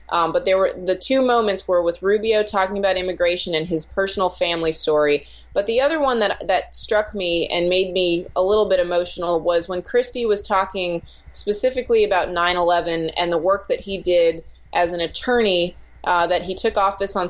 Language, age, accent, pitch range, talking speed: English, 30-49, American, 170-195 Hz, 195 wpm